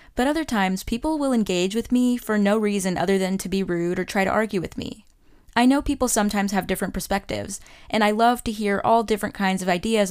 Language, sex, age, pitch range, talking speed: English, female, 10-29, 185-225 Hz, 230 wpm